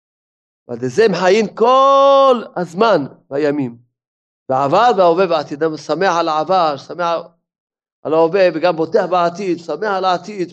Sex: male